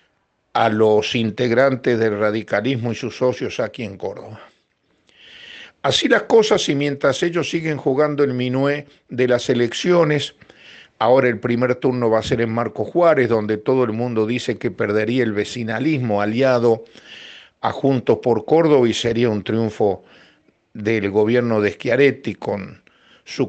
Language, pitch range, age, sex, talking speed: Spanish, 115-150 Hz, 50-69, male, 150 wpm